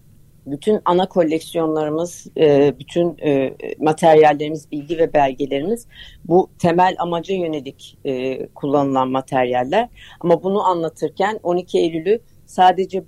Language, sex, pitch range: Turkish, female, 145-180 Hz